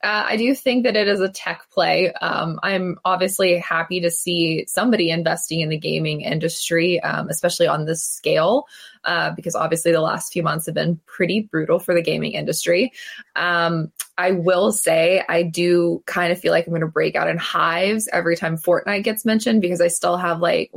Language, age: English, 20-39